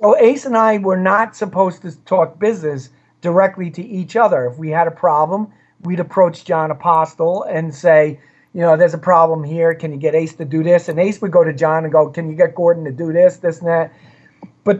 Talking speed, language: 230 wpm, English